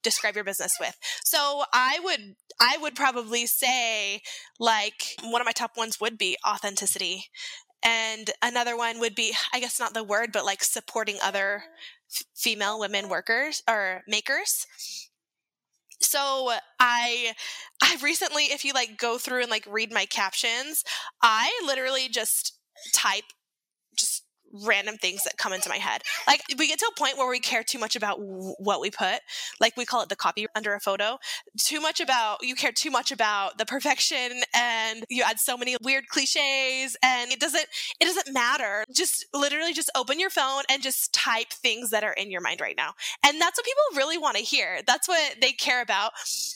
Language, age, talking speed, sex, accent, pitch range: English, 10-29, 180 wpm, female, American, 225-295 Hz